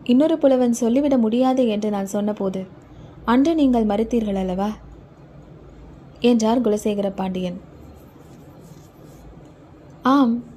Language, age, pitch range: Tamil, 20-39, 170-255 Hz